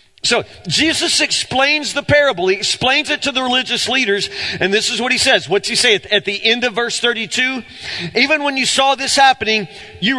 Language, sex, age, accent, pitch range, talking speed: English, male, 40-59, American, 175-270 Hz, 200 wpm